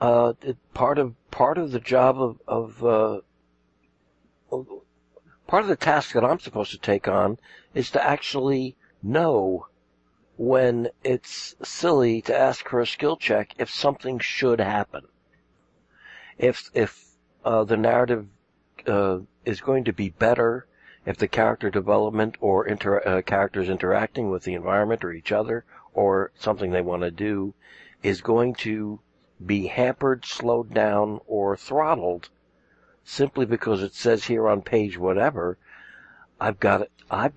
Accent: American